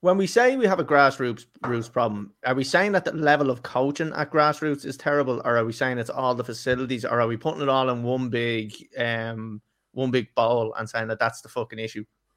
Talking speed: 240 wpm